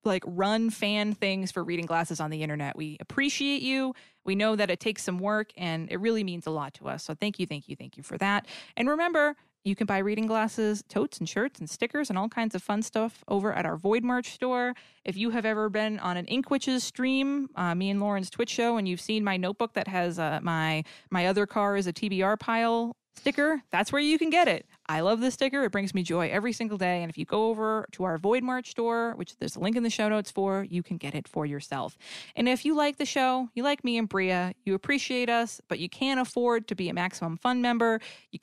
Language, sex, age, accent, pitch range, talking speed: English, female, 20-39, American, 190-245 Hz, 250 wpm